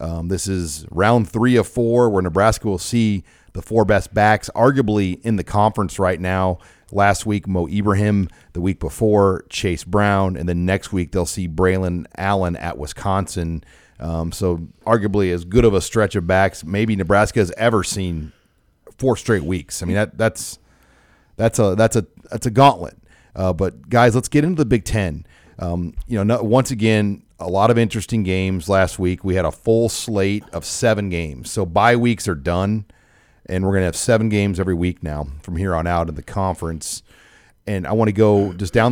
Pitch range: 90-110 Hz